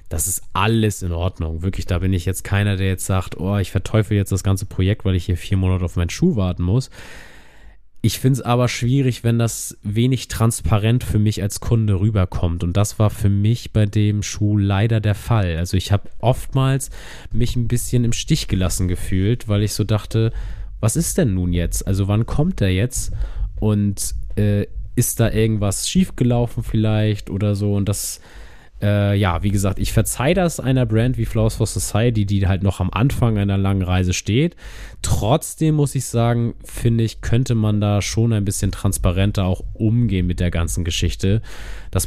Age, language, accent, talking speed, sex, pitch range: 20-39, German, German, 190 wpm, male, 95-110 Hz